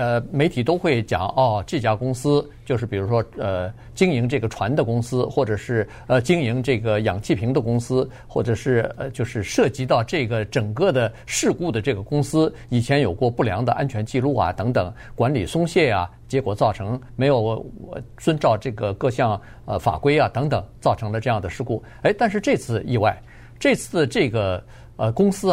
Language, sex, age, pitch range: Chinese, male, 50-69, 115-145 Hz